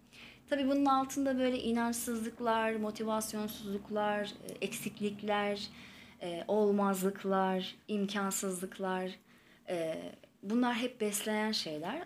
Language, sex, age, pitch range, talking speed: Turkish, female, 30-49, 185-240 Hz, 65 wpm